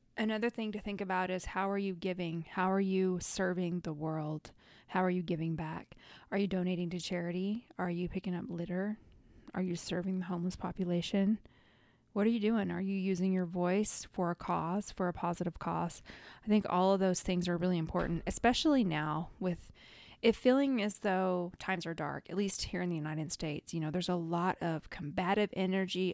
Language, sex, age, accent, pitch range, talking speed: English, female, 20-39, American, 180-200 Hz, 200 wpm